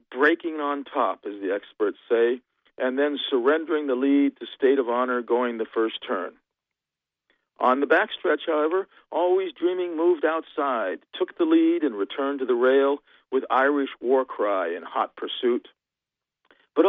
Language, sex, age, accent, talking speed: English, male, 50-69, American, 155 wpm